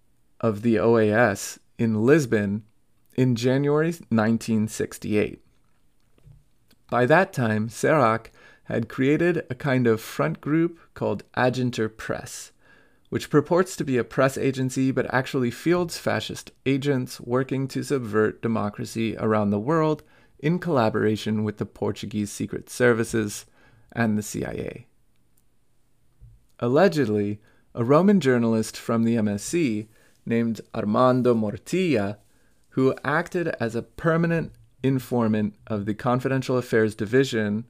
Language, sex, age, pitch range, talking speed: English, male, 30-49, 110-140 Hz, 115 wpm